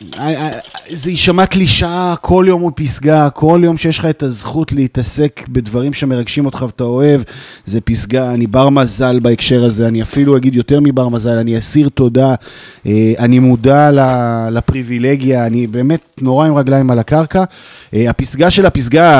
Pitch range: 120-160 Hz